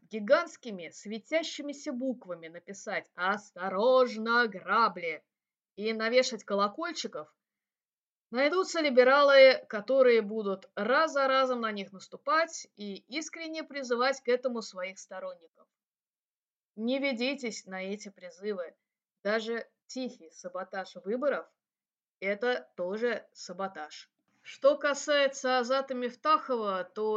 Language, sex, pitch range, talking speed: Russian, female, 210-275 Hz, 95 wpm